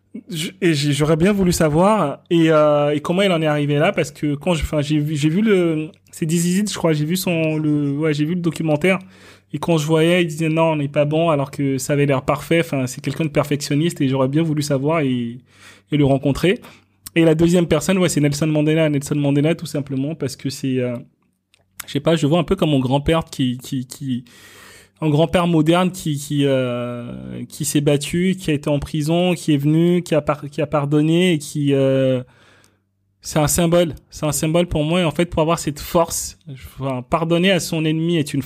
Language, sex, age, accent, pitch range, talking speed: French, male, 20-39, French, 135-165 Hz, 225 wpm